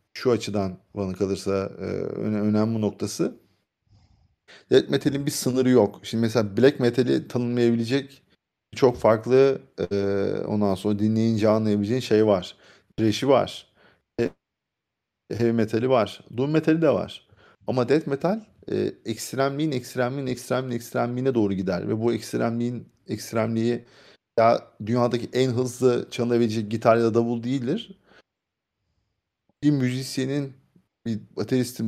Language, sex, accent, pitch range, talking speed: Turkish, male, native, 110-130 Hz, 115 wpm